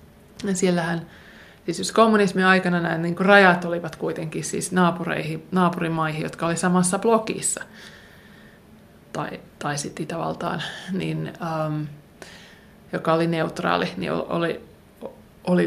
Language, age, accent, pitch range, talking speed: Finnish, 20-39, native, 160-185 Hz, 105 wpm